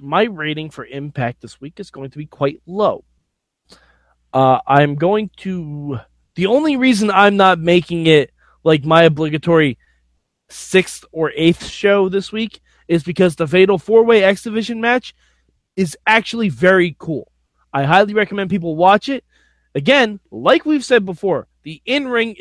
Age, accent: 20-39, American